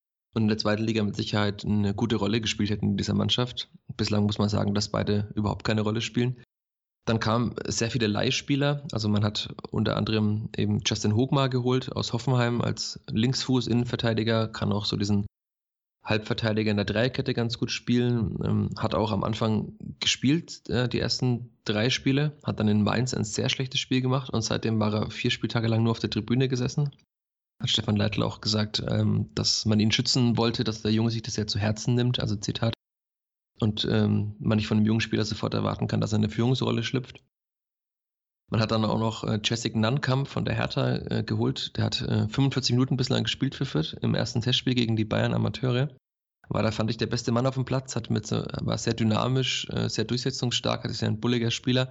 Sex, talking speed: male, 195 wpm